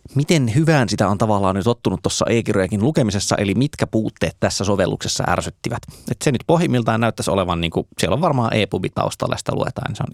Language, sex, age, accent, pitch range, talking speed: Finnish, male, 20-39, native, 95-120 Hz, 200 wpm